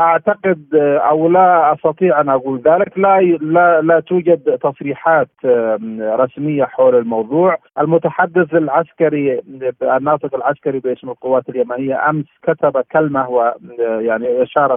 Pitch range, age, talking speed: 125-165 Hz, 40-59, 110 wpm